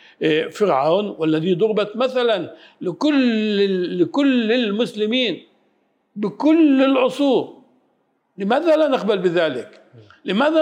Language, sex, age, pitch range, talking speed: Arabic, male, 60-79, 175-250 Hz, 80 wpm